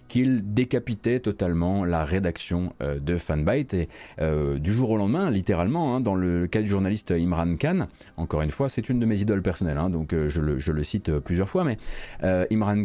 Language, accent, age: French, French, 30-49